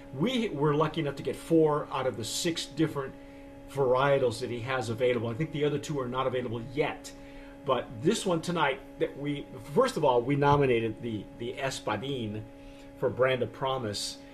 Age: 40-59